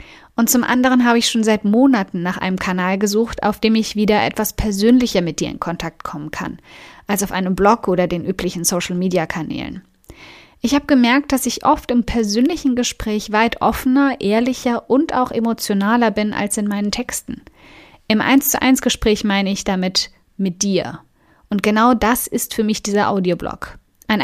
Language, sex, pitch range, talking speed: German, female, 195-235 Hz, 175 wpm